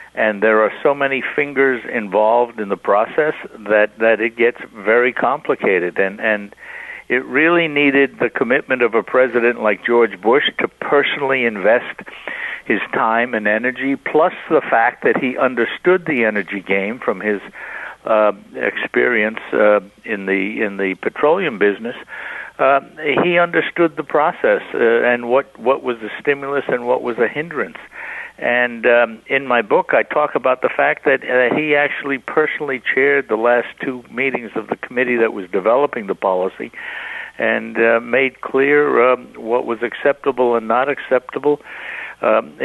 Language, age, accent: English, 60-79, American